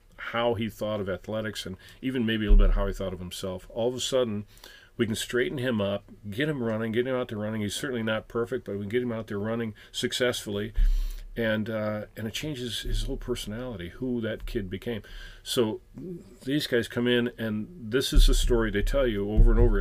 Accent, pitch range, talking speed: American, 95-120 Hz, 225 wpm